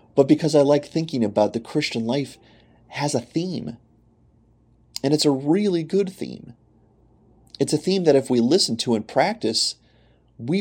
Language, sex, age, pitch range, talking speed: English, male, 30-49, 110-145 Hz, 165 wpm